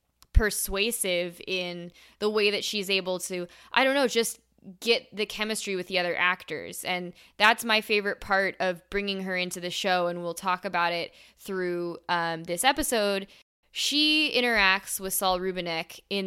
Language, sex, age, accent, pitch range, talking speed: English, female, 10-29, American, 175-215 Hz, 165 wpm